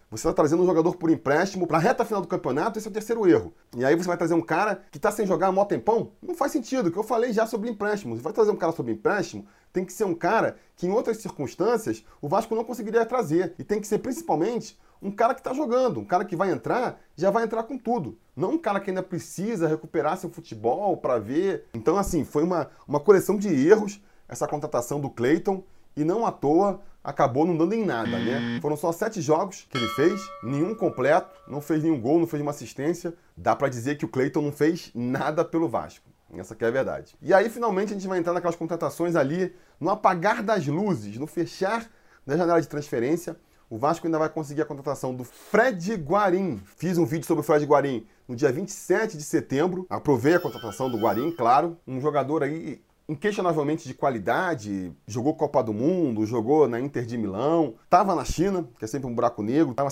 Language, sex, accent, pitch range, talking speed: Portuguese, male, Brazilian, 140-195 Hz, 220 wpm